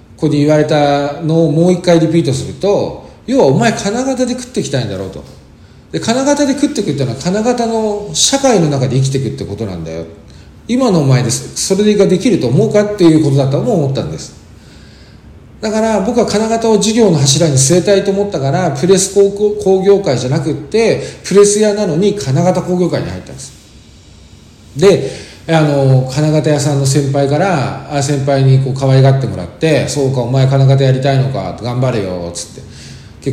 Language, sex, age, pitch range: Japanese, male, 40-59, 120-185 Hz